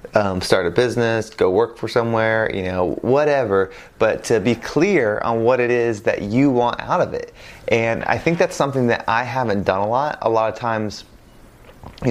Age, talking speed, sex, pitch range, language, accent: 20-39, 200 wpm, male, 105-125 Hz, English, American